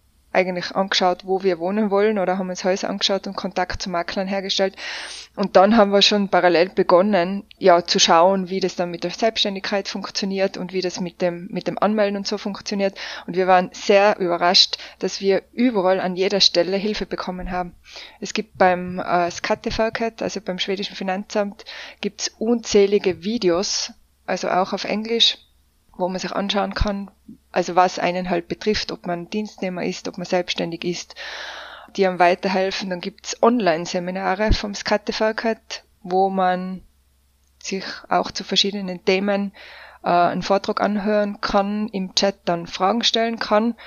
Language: German